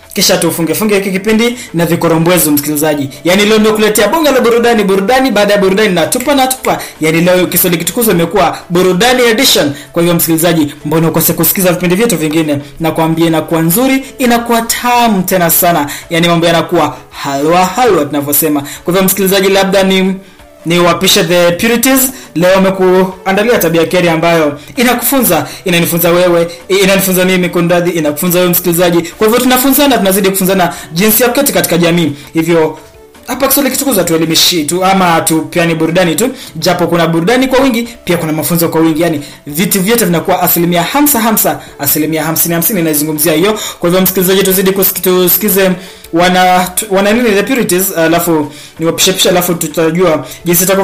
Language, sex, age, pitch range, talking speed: English, male, 20-39, 165-210 Hz, 160 wpm